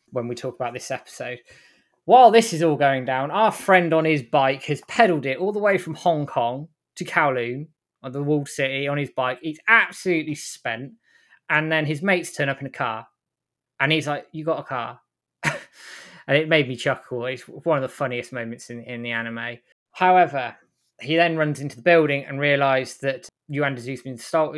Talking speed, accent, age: 205 wpm, British, 20-39